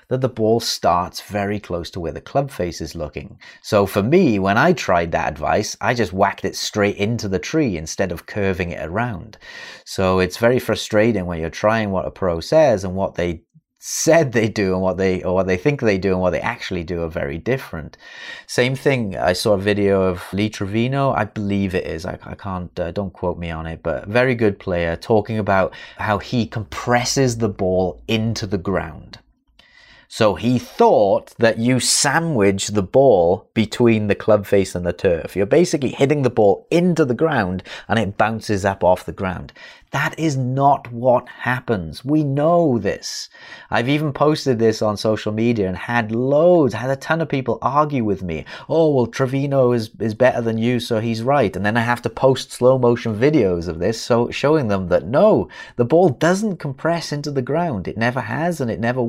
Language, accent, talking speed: English, British, 205 wpm